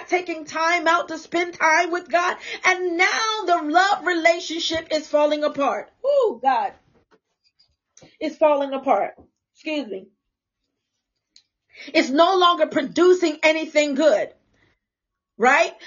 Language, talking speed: English, 115 wpm